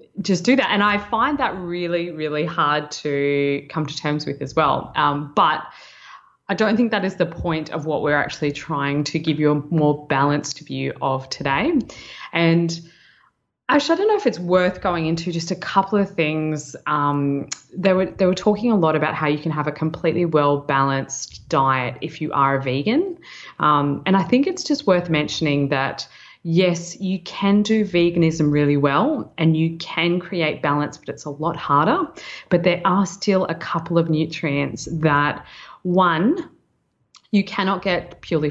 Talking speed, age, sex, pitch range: 180 wpm, 20-39, female, 150-190 Hz